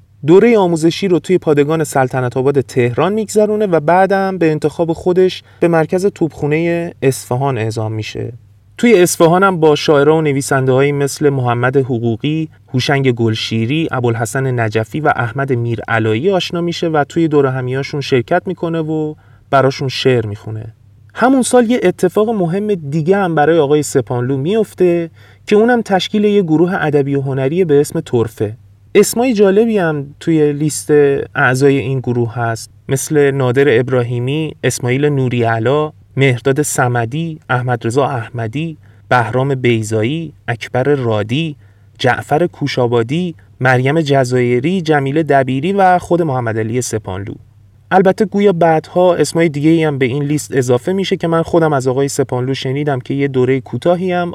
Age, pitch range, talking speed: 30-49, 125-165 Hz, 140 wpm